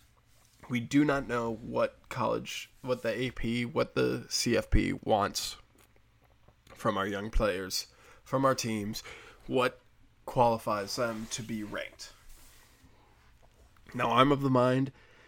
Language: English